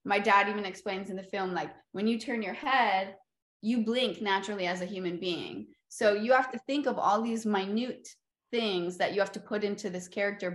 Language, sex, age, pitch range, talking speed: English, female, 20-39, 175-215 Hz, 215 wpm